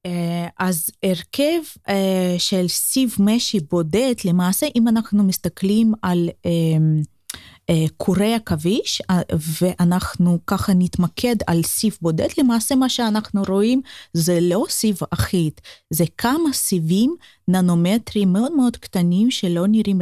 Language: Hebrew